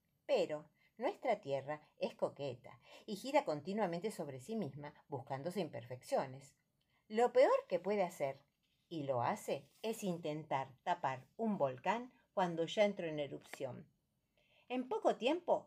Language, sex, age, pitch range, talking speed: Spanish, female, 50-69, 150-220 Hz, 130 wpm